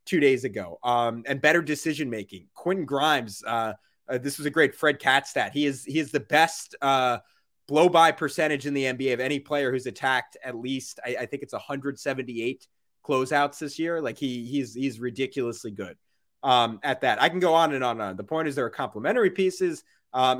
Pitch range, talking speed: 130-150 Hz, 205 wpm